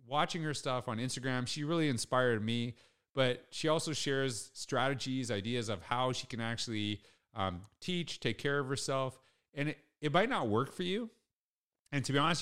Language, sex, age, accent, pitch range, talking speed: English, male, 40-59, American, 110-140 Hz, 185 wpm